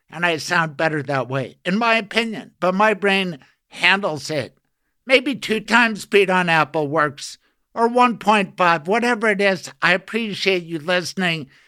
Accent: American